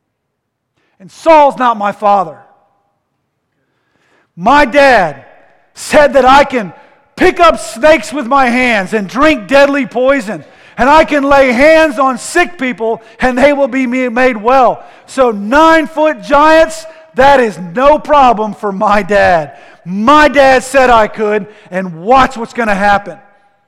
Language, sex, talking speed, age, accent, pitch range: English, male, 145 wpm, 50-69, American, 195-265 Hz